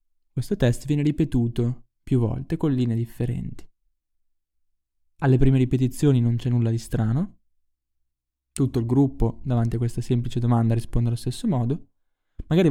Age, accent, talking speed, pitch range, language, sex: 20-39, native, 140 wpm, 110-135 Hz, Italian, male